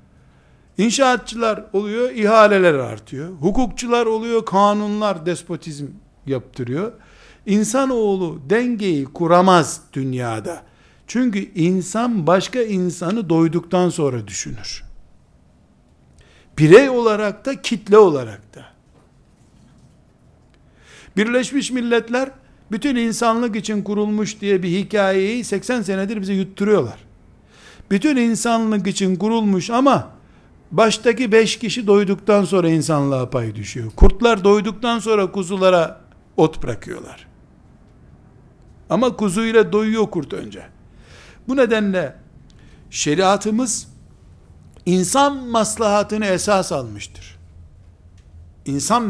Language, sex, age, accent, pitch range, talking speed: Turkish, male, 60-79, native, 140-220 Hz, 90 wpm